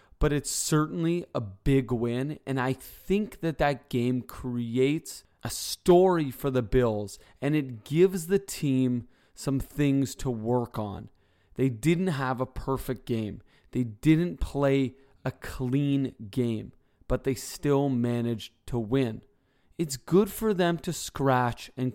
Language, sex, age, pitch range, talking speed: English, male, 20-39, 115-150 Hz, 145 wpm